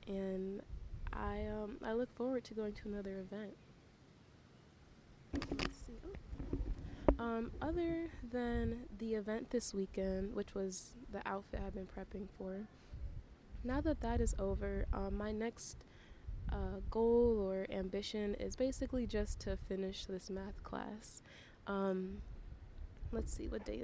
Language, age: English, 20-39